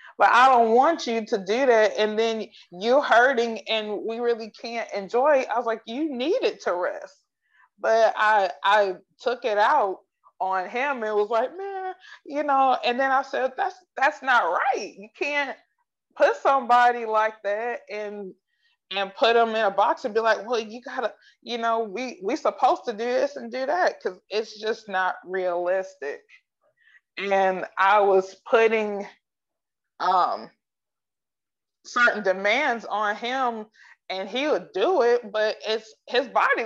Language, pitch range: English, 205-265 Hz